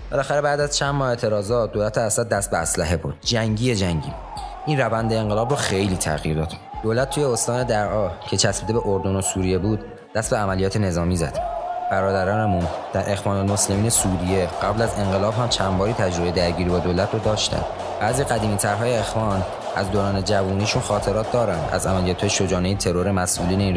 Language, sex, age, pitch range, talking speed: Persian, male, 20-39, 95-115 Hz, 170 wpm